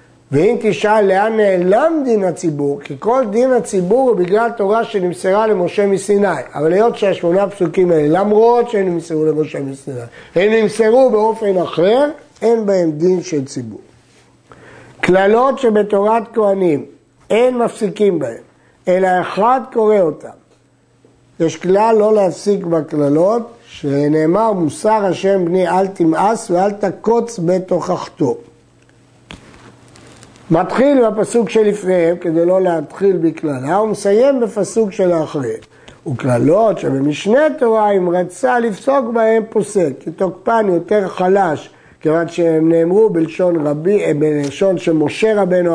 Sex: male